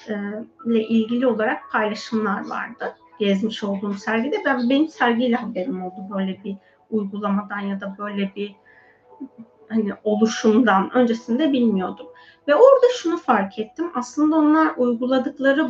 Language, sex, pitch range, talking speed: Turkish, female, 220-275 Hz, 120 wpm